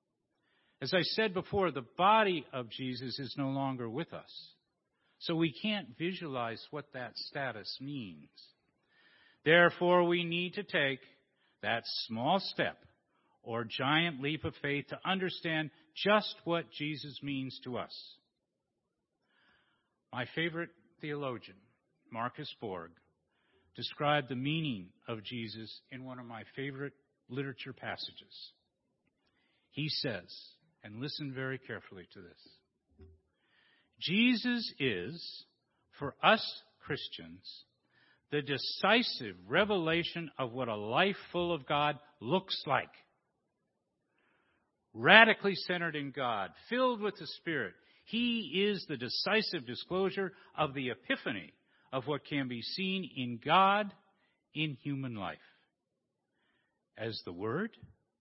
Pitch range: 125-180 Hz